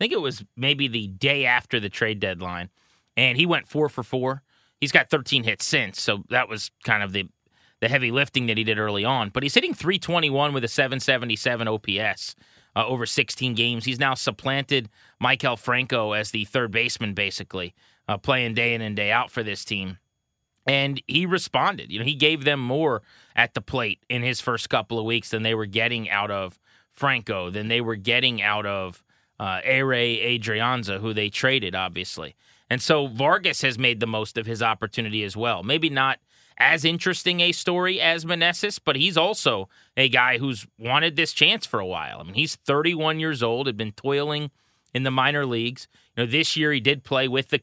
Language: English